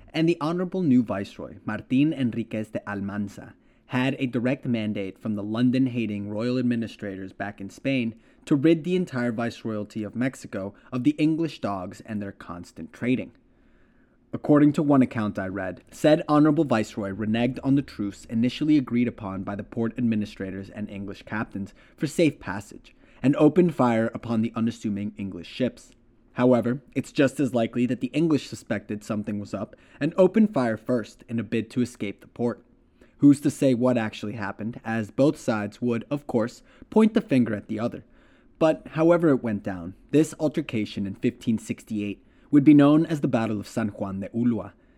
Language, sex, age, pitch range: English, male, 30-49, 105-140 Hz